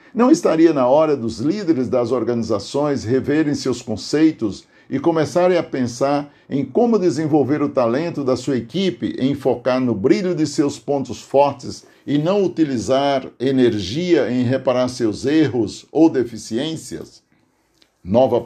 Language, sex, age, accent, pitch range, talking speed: Portuguese, male, 50-69, Brazilian, 130-170 Hz, 135 wpm